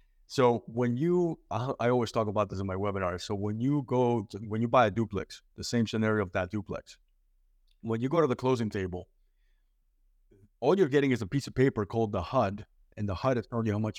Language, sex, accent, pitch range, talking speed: English, male, American, 100-120 Hz, 225 wpm